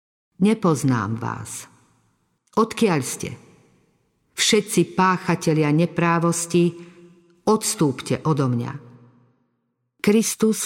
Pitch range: 155-190 Hz